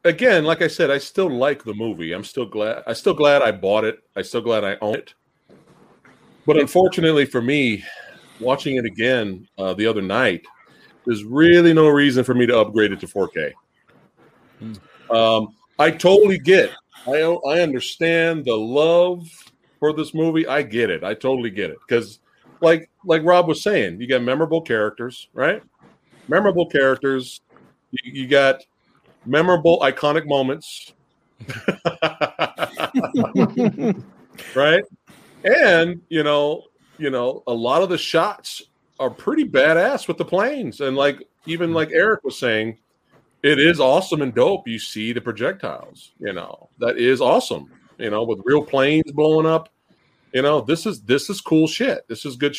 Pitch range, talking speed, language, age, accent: 130-175 Hz, 160 wpm, English, 40-59, American